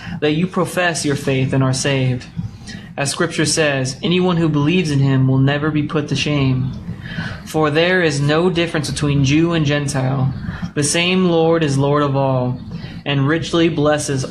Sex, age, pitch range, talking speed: male, 20-39, 135-165 Hz, 170 wpm